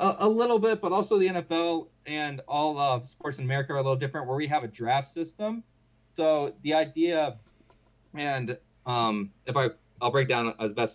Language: English